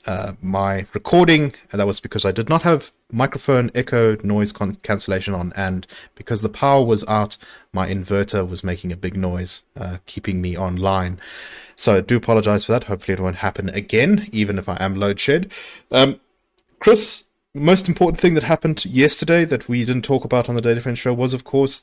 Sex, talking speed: male, 195 wpm